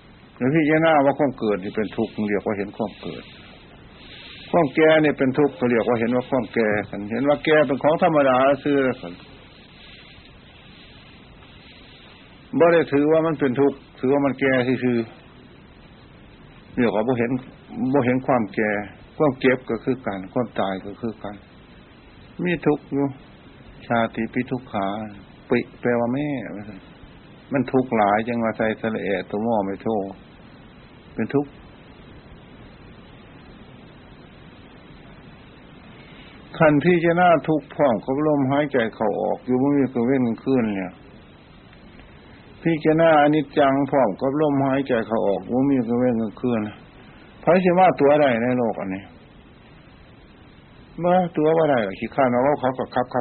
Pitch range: 110-140 Hz